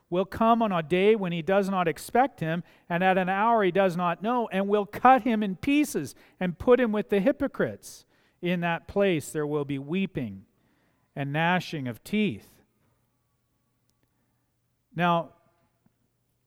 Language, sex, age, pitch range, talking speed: English, male, 40-59, 150-215 Hz, 155 wpm